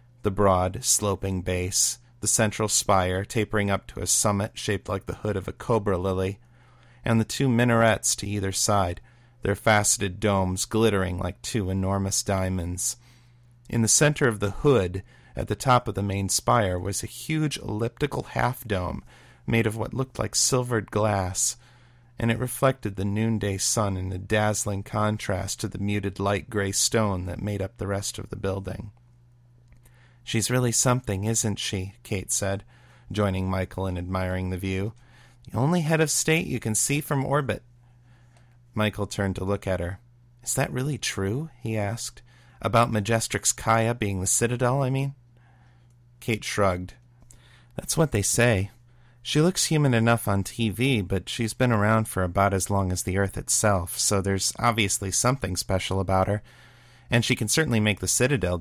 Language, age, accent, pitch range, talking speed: English, 40-59, American, 100-120 Hz, 170 wpm